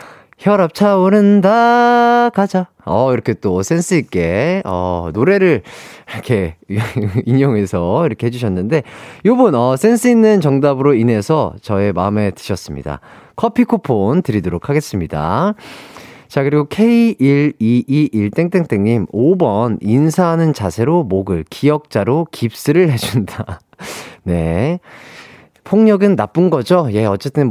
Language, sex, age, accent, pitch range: Korean, male, 30-49, native, 105-175 Hz